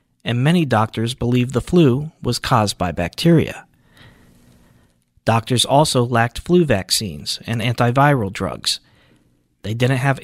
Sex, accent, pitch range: male, American, 105-155 Hz